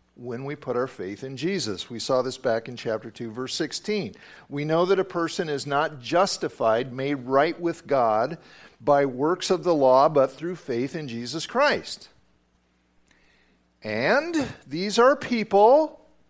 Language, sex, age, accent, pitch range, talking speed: English, male, 50-69, American, 130-215 Hz, 160 wpm